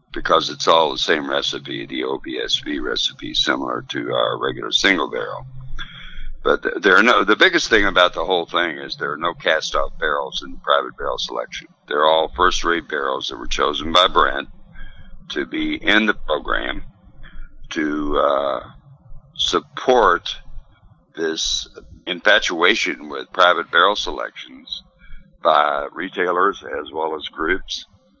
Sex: male